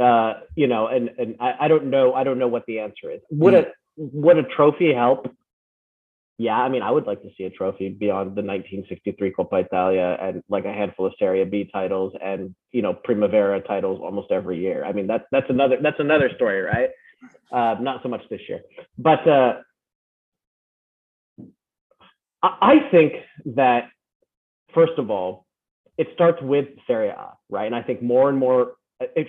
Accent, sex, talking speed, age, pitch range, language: American, male, 180 wpm, 30-49, 110-155 Hz, English